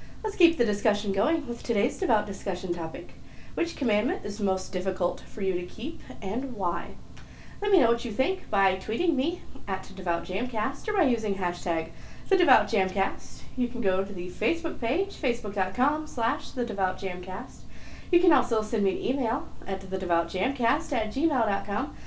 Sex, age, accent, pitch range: female, 30-49, American, 190-290 Hz